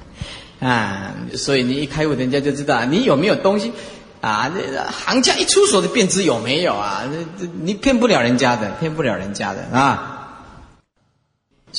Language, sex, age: Chinese, male, 30-49